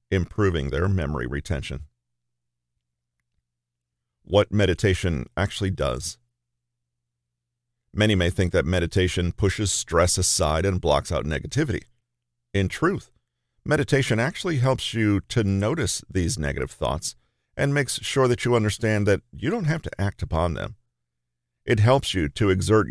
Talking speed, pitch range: 130 wpm, 80-110 Hz